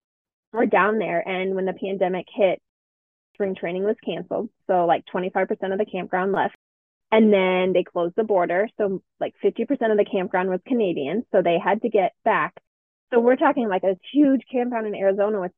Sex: female